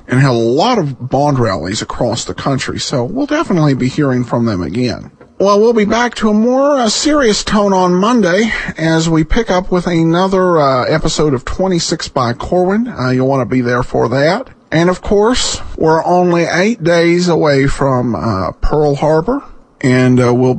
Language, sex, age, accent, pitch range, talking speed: English, male, 50-69, American, 120-175 Hz, 190 wpm